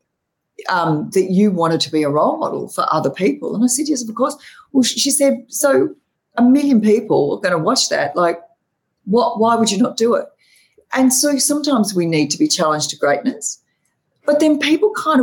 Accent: Australian